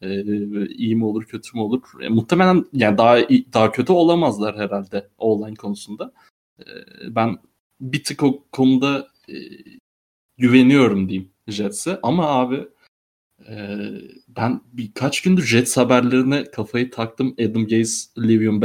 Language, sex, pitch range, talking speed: Turkish, male, 110-130 Hz, 125 wpm